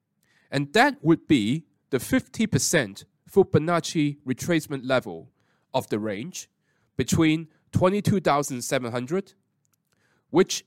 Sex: male